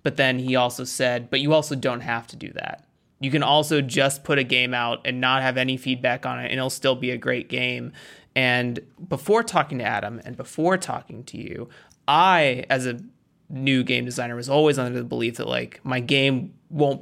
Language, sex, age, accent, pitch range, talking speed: English, male, 30-49, American, 125-145 Hz, 215 wpm